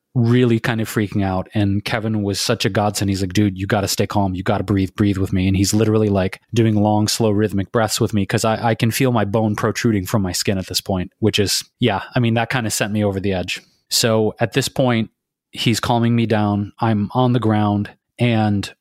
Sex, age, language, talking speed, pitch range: male, 30-49, English, 245 wpm, 105-120 Hz